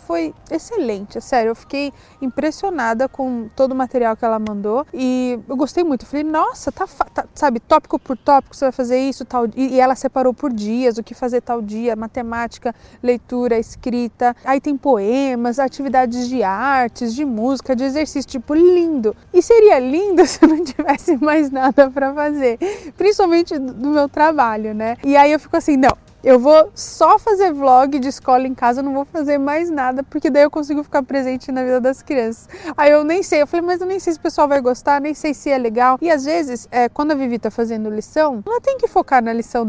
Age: 20-39